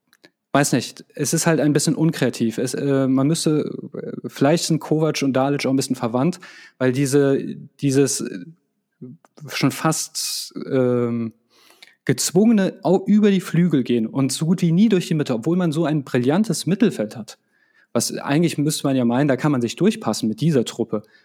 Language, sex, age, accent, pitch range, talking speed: German, male, 30-49, German, 125-155 Hz, 160 wpm